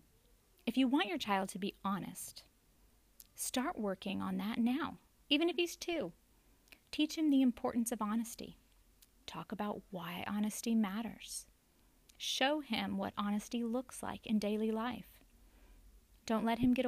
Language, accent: English, American